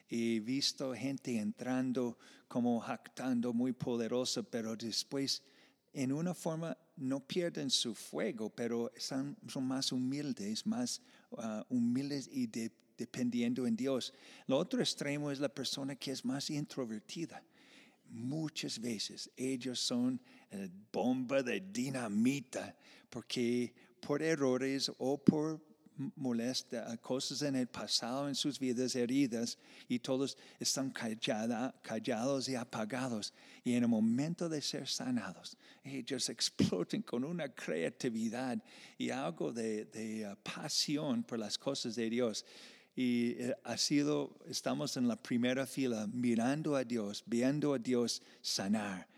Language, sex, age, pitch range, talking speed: Spanish, male, 50-69, 120-165 Hz, 125 wpm